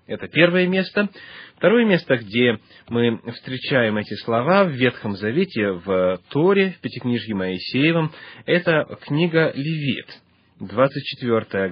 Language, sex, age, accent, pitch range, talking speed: Russian, male, 30-49, native, 105-150 Hz, 115 wpm